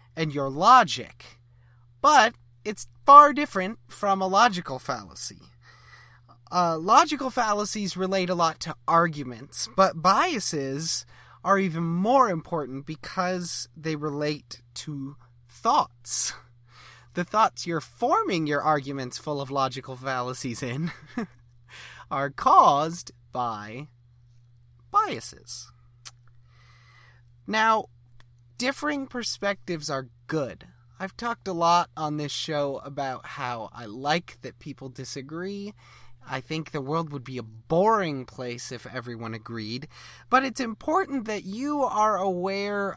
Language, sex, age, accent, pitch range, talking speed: English, male, 30-49, American, 120-190 Hz, 115 wpm